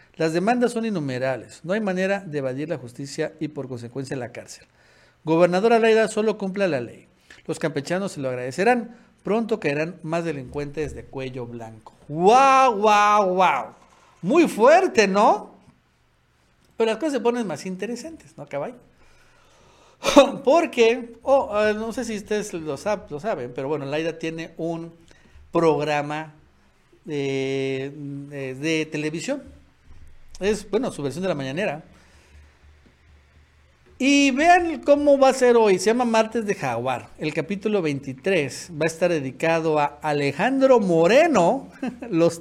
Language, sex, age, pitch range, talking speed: Spanish, male, 50-69, 135-215 Hz, 135 wpm